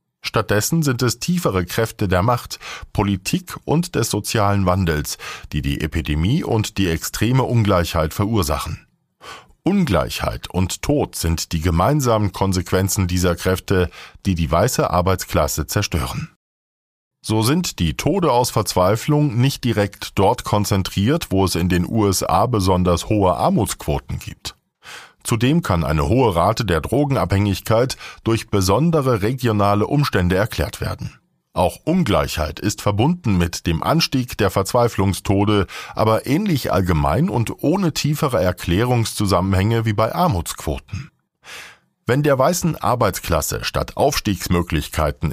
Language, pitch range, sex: German, 90-120 Hz, male